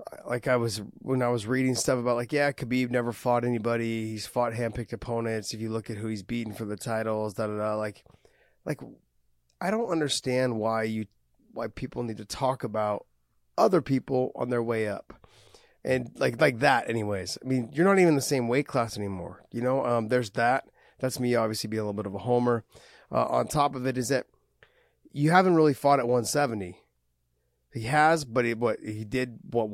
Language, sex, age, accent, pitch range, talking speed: English, male, 30-49, American, 110-140 Hz, 205 wpm